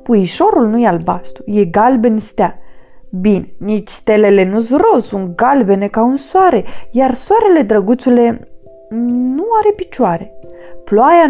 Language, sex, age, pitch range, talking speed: Romanian, female, 20-39, 190-260 Hz, 130 wpm